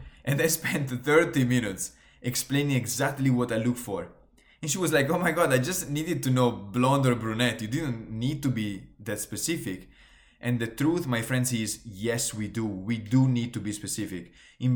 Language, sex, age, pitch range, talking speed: English, male, 20-39, 105-135 Hz, 200 wpm